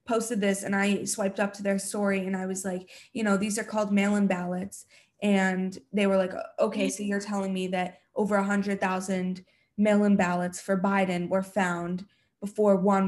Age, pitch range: 20-39, 190-215 Hz